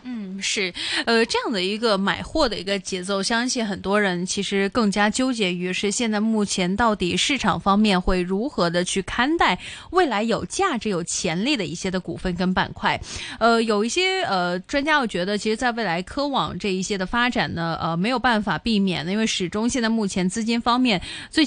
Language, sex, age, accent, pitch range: Chinese, female, 20-39, native, 190-245 Hz